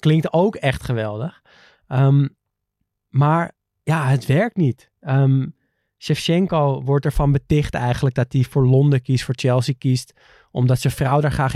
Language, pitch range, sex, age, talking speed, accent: Dutch, 125-145 Hz, male, 20-39, 150 wpm, Dutch